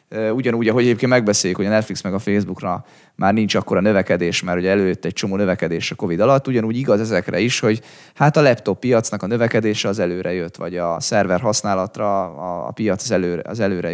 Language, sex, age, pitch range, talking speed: Hungarian, male, 20-39, 95-125 Hz, 200 wpm